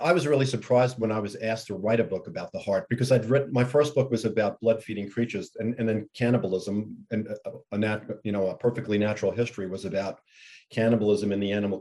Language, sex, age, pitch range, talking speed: English, male, 40-59, 105-125 Hz, 225 wpm